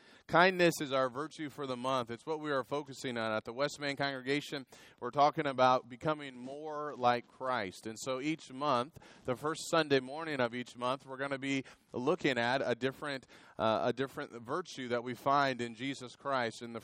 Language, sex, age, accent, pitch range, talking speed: Italian, male, 30-49, American, 115-145 Hz, 190 wpm